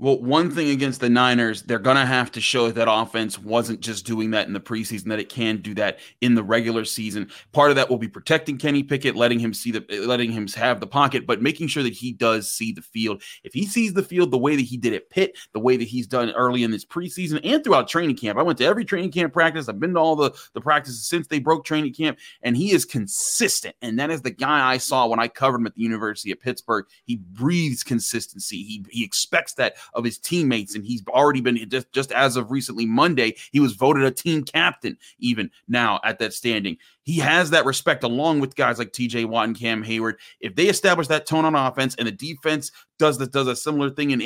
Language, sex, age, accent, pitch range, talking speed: English, male, 30-49, American, 115-155 Hz, 245 wpm